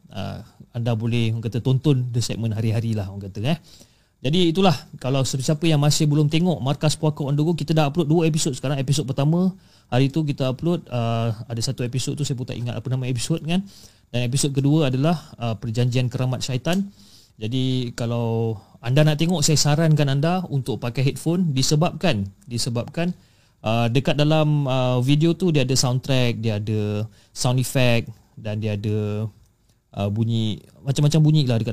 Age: 30-49